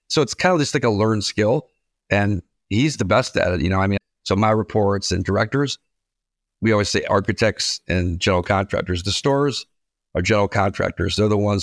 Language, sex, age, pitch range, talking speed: English, male, 50-69, 100-120 Hz, 200 wpm